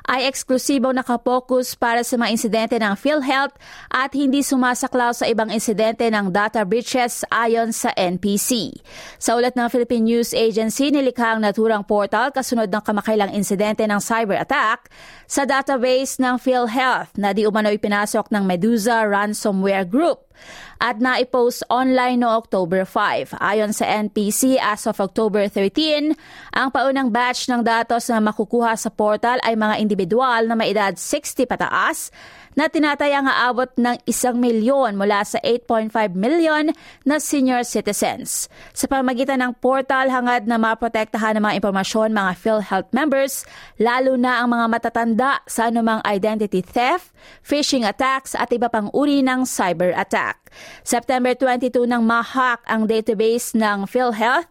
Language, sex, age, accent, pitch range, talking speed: Filipino, female, 20-39, native, 215-255 Hz, 145 wpm